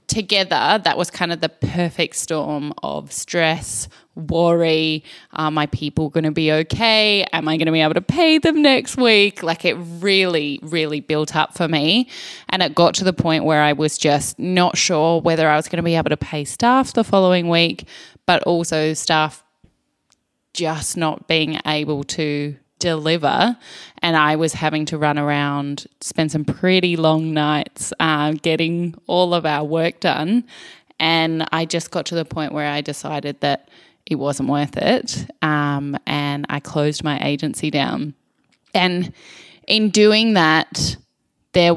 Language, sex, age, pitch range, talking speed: English, female, 10-29, 150-175 Hz, 170 wpm